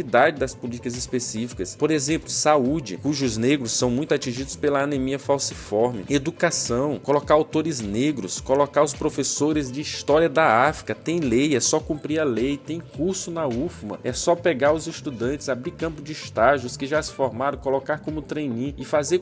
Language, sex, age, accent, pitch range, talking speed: Portuguese, male, 20-39, Brazilian, 130-160 Hz, 170 wpm